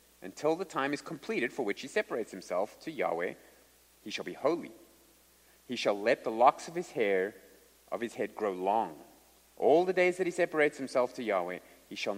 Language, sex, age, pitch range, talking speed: English, male, 30-49, 110-155 Hz, 195 wpm